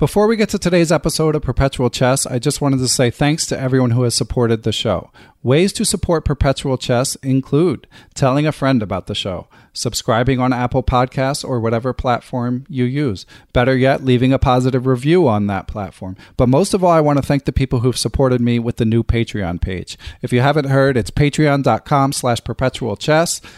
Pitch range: 120-145 Hz